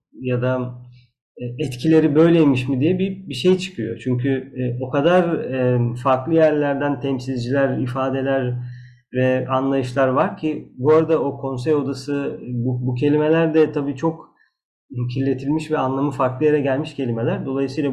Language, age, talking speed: Turkish, 40-59, 140 wpm